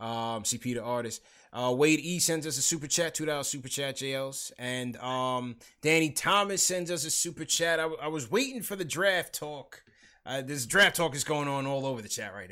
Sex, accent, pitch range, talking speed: male, American, 120-145 Hz, 225 wpm